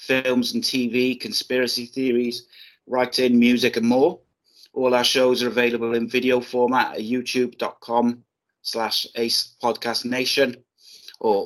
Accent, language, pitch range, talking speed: British, English, 115-125 Hz, 125 wpm